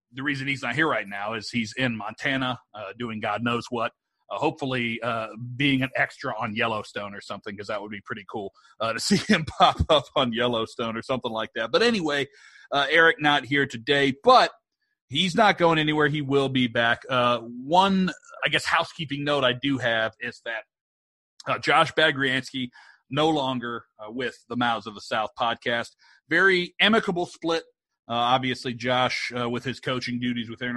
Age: 40-59